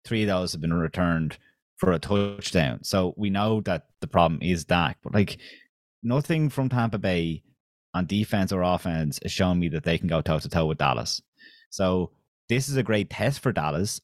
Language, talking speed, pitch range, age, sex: English, 200 wpm, 85-105 Hz, 30-49, male